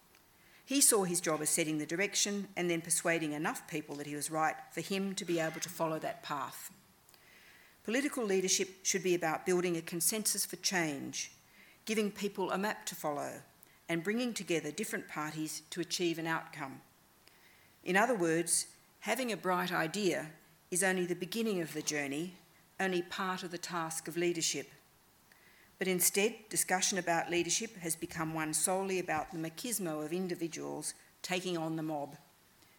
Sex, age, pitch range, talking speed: female, 50-69, 165-195 Hz, 165 wpm